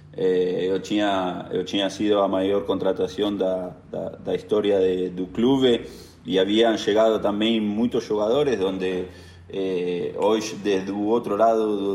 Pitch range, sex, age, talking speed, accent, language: 95-120 Hz, male, 30-49, 140 wpm, Argentinian, French